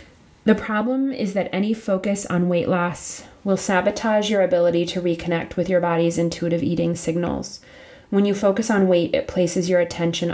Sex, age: female, 30-49